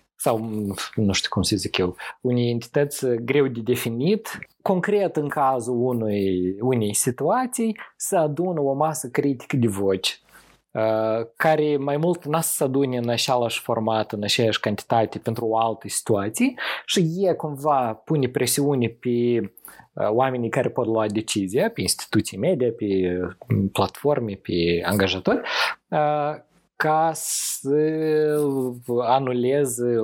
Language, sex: Romanian, male